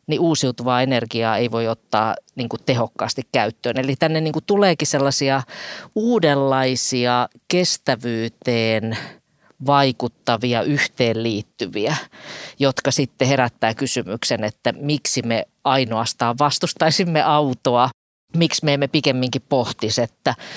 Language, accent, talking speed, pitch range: Finnish, native, 95 wpm, 115-145 Hz